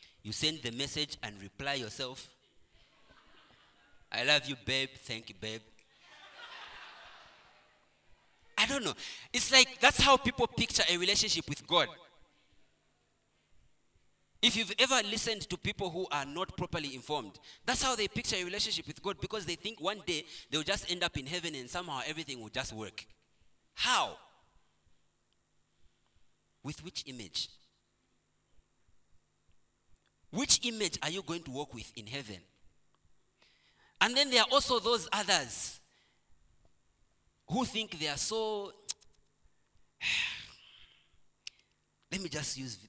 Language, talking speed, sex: English, 130 wpm, male